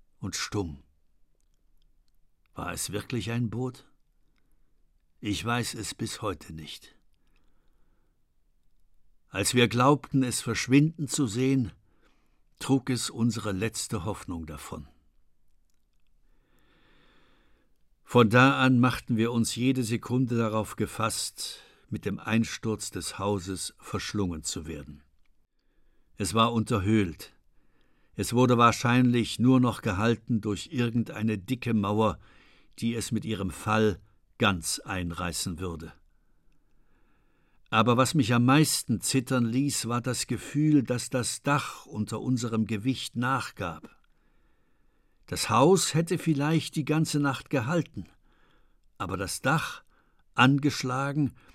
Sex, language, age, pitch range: male, German, 60-79, 100-130 Hz